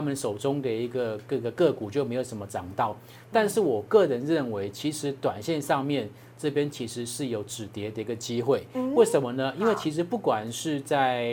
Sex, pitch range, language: male, 120-145 Hz, Chinese